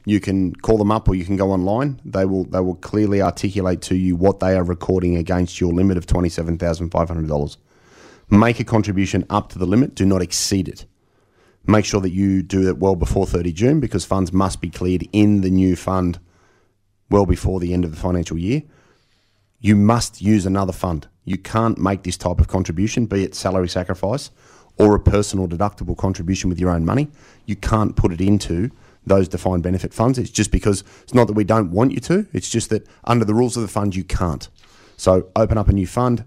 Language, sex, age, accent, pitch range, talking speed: English, male, 30-49, Australian, 95-110 Hz, 210 wpm